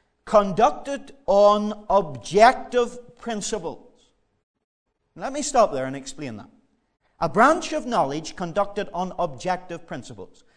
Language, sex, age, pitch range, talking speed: English, male, 40-59, 195-255 Hz, 110 wpm